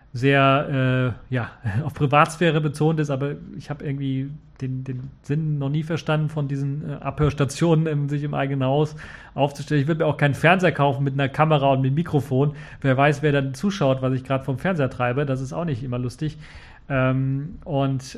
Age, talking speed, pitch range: 40-59, 195 wpm, 130-150 Hz